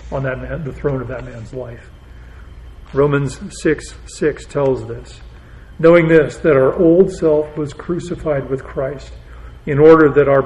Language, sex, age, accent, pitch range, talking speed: English, male, 40-59, American, 130-155 Hz, 160 wpm